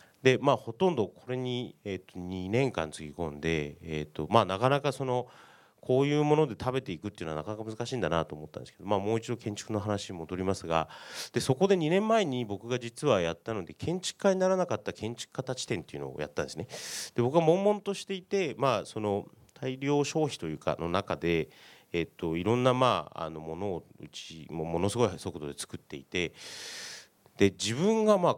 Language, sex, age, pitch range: Japanese, male, 30-49, 80-135 Hz